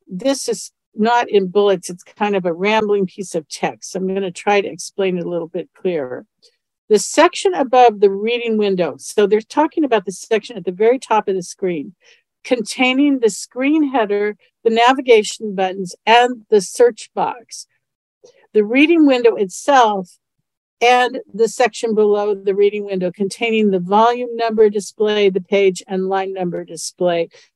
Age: 50-69